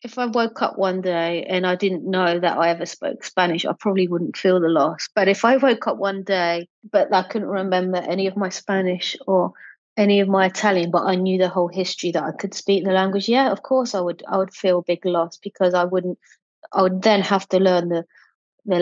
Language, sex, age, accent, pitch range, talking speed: English, female, 30-49, British, 175-200 Hz, 240 wpm